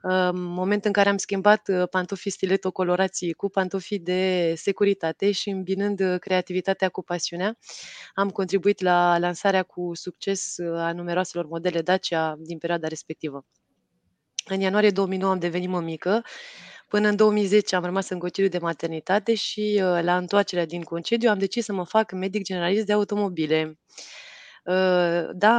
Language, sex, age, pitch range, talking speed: Romanian, female, 20-39, 175-200 Hz, 140 wpm